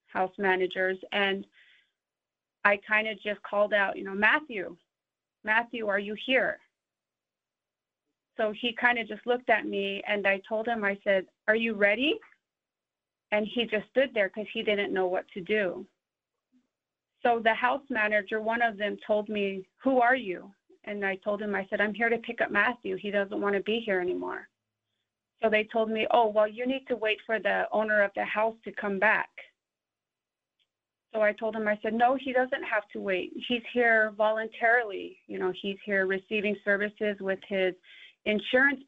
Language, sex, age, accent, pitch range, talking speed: English, female, 30-49, American, 195-225 Hz, 185 wpm